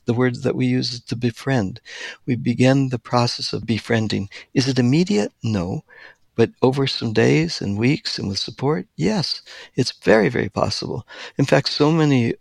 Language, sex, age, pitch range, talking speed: English, male, 60-79, 105-130 Hz, 175 wpm